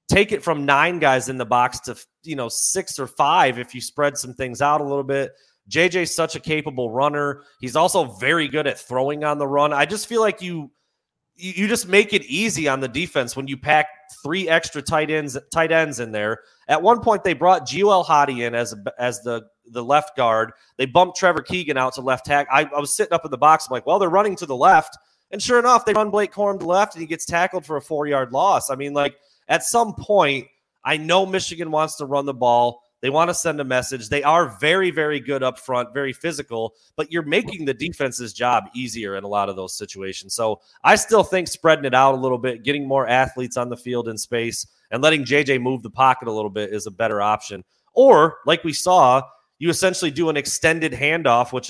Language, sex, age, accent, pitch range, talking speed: English, male, 30-49, American, 125-165 Hz, 235 wpm